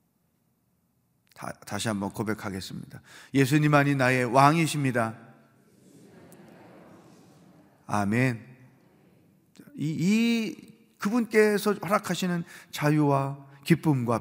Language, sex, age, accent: Korean, male, 40-59, native